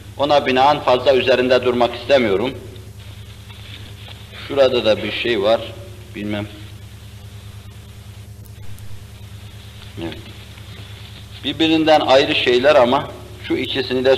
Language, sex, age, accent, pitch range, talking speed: Turkish, male, 50-69, native, 100-115 Hz, 80 wpm